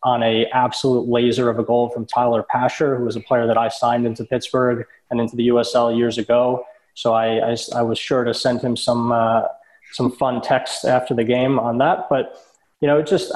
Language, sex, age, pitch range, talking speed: English, male, 20-39, 115-125 Hz, 215 wpm